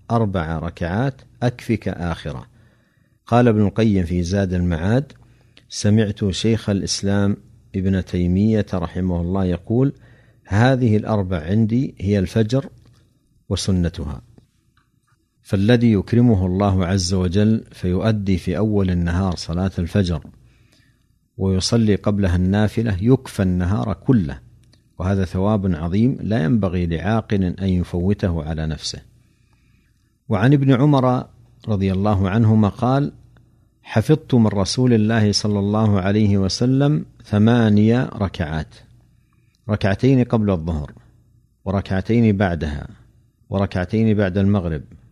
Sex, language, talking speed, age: male, Arabic, 100 wpm, 50-69